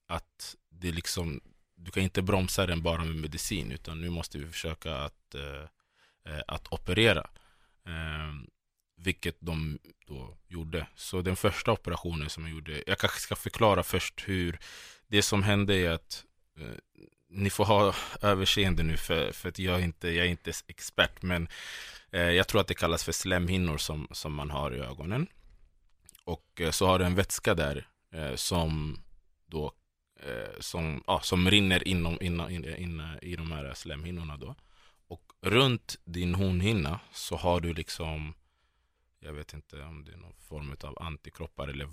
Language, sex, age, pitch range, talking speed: Swedish, male, 20-39, 80-95 Hz, 165 wpm